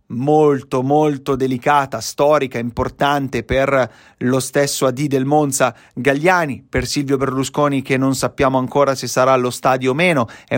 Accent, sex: native, male